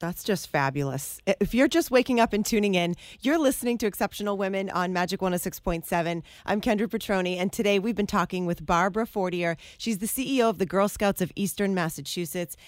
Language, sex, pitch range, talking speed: English, female, 175-215 Hz, 190 wpm